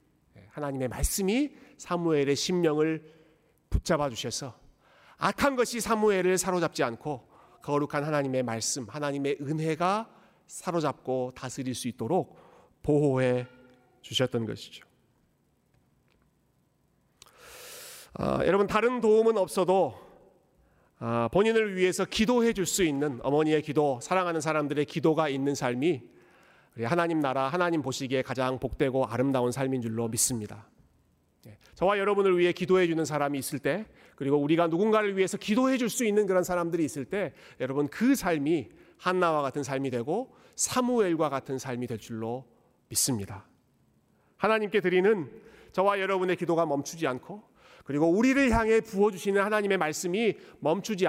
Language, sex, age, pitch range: Korean, male, 40-59, 135-195 Hz